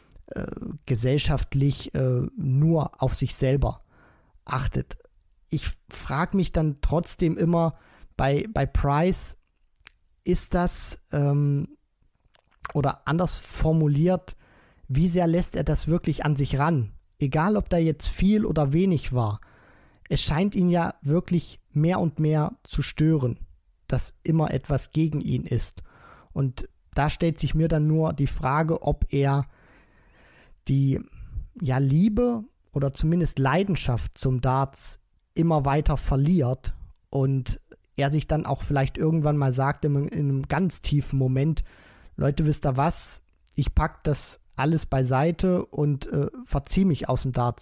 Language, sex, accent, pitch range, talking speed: German, male, German, 135-160 Hz, 135 wpm